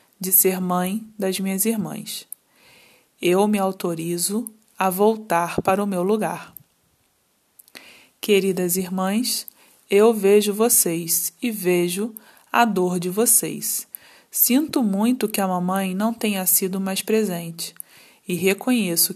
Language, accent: Portuguese, Brazilian